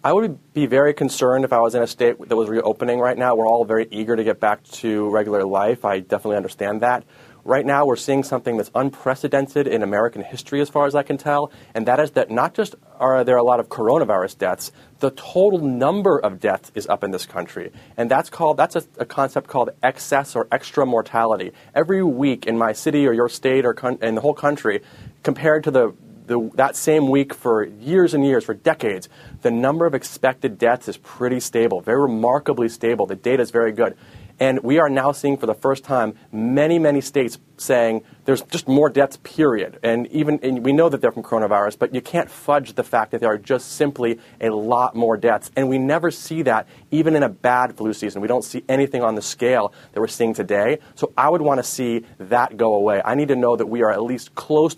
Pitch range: 115-145 Hz